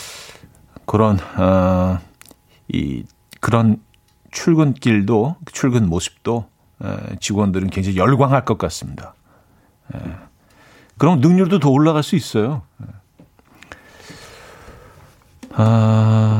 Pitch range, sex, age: 105-150 Hz, male, 40-59